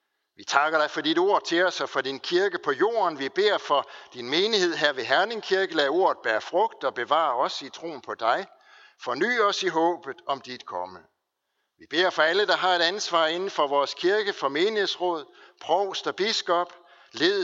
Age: 60-79